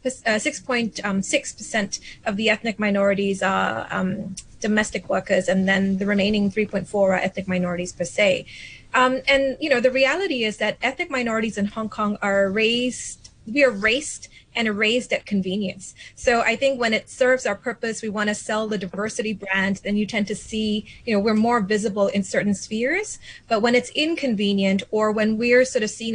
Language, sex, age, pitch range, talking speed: English, female, 20-39, 200-240 Hz, 185 wpm